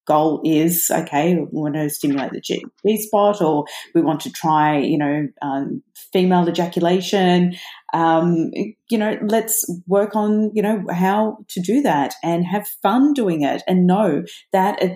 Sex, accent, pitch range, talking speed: female, Australian, 160-215 Hz, 170 wpm